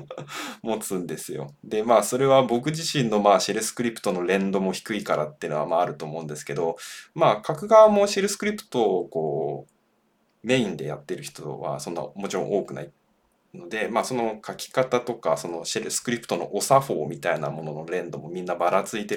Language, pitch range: Japanese, 90-150 Hz